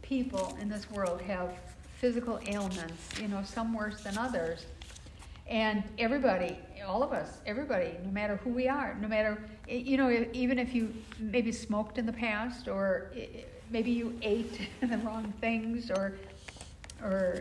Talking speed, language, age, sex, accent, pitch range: 155 wpm, English, 60-79, female, American, 195-250 Hz